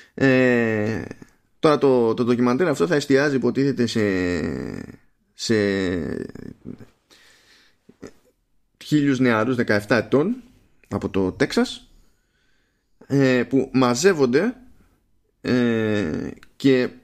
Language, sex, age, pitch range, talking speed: Greek, male, 20-39, 105-130 Hz, 85 wpm